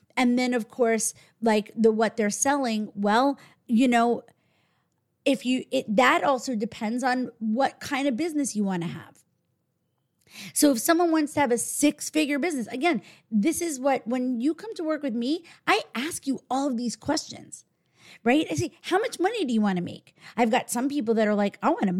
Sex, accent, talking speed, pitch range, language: female, American, 205 wpm, 215-285 Hz, English